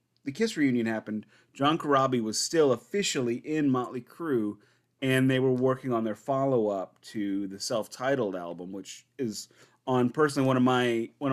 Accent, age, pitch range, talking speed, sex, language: American, 30-49, 100-130 Hz, 165 wpm, male, English